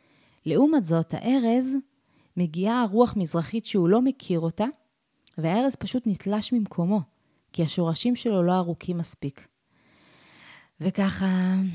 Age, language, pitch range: 30-49, Hebrew, 160-225 Hz